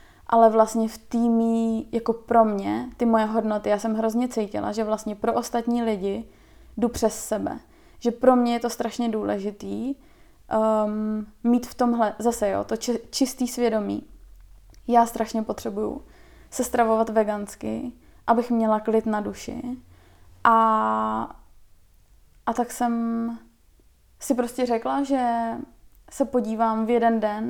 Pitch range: 220-235 Hz